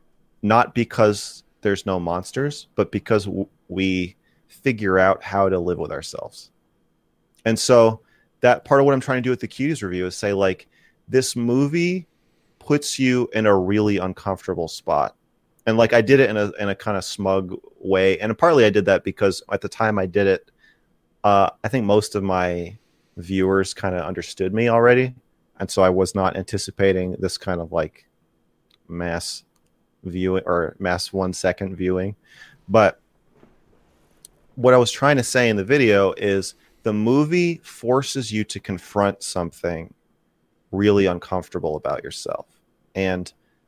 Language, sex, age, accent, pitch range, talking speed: English, male, 30-49, American, 95-115 Hz, 165 wpm